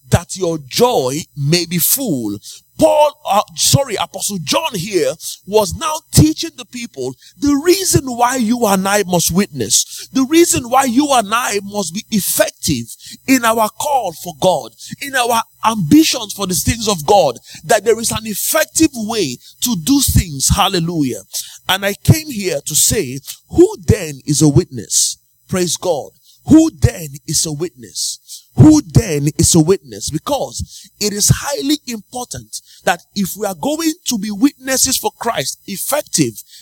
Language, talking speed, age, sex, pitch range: English, 155 wpm, 30-49, male, 150-250 Hz